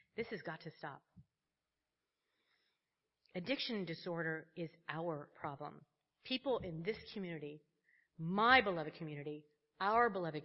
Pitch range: 165-230 Hz